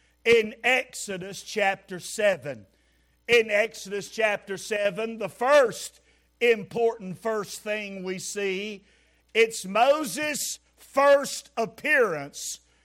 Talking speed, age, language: 90 wpm, 50-69, English